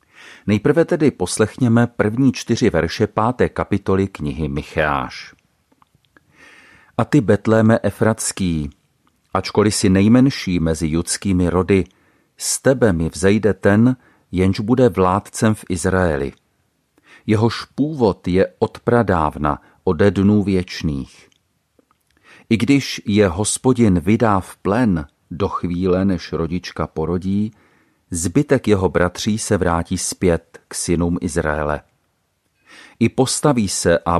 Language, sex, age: Czech, male, 40-59